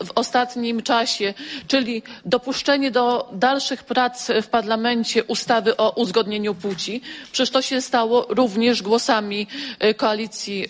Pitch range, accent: 220-265 Hz, Polish